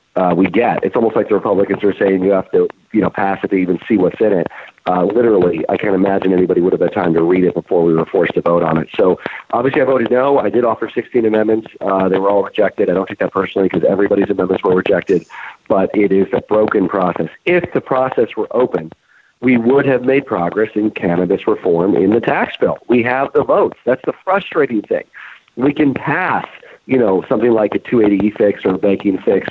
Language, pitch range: English, 95-125 Hz